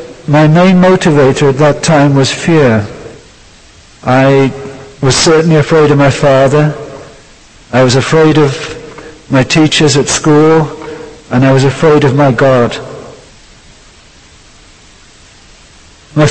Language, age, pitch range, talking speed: English, 50-69, 130-160 Hz, 115 wpm